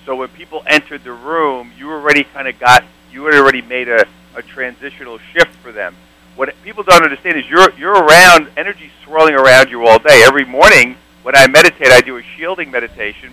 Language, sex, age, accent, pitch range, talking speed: English, male, 50-69, American, 120-160 Hz, 205 wpm